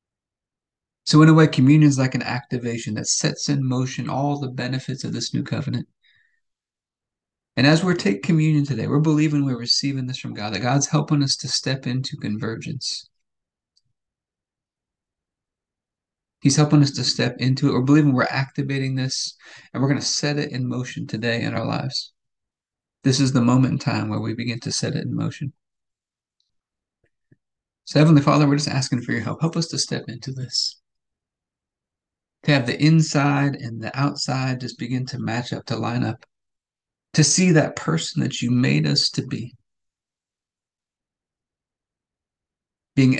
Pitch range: 120-145 Hz